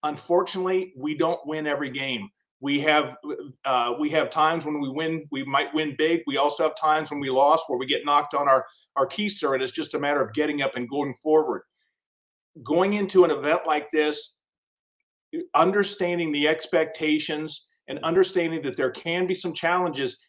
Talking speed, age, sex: 180 wpm, 50-69, male